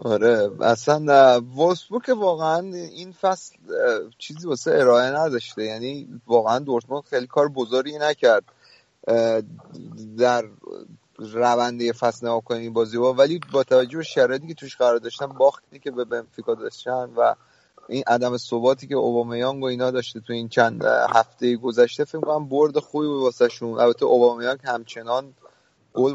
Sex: male